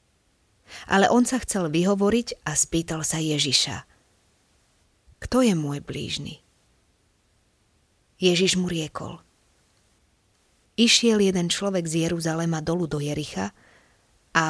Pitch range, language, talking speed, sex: 150-195 Hz, Slovak, 105 wpm, female